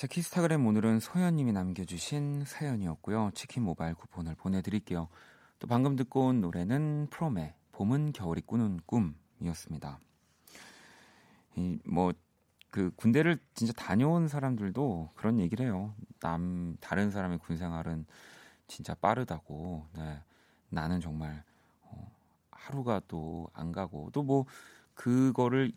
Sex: male